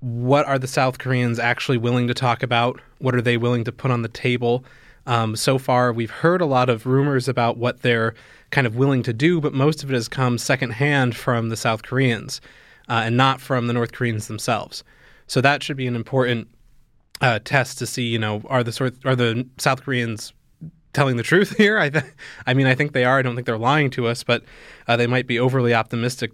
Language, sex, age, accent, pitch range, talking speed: English, male, 20-39, American, 120-135 Hz, 230 wpm